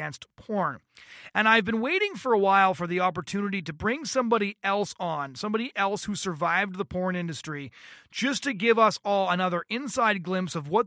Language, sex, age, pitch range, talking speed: English, male, 30-49, 175-220 Hz, 190 wpm